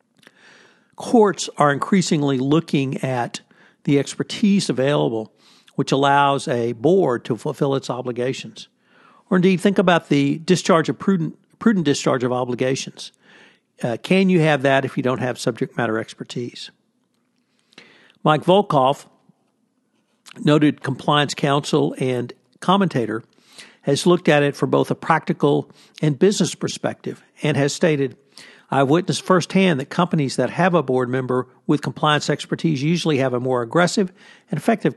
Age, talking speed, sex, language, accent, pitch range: 60-79, 140 wpm, male, English, American, 135-185 Hz